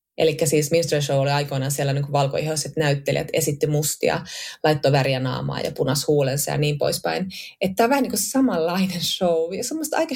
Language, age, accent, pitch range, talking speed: Finnish, 20-39, native, 155-200 Hz, 195 wpm